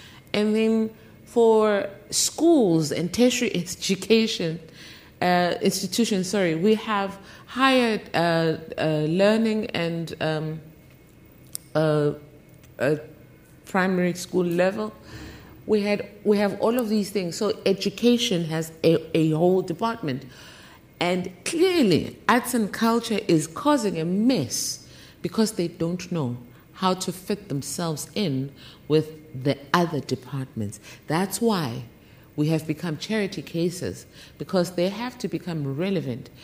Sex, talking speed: female, 120 wpm